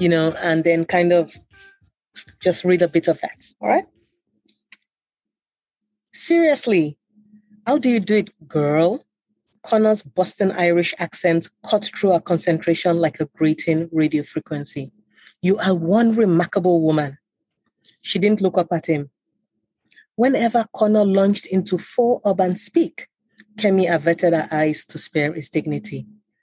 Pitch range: 160-210 Hz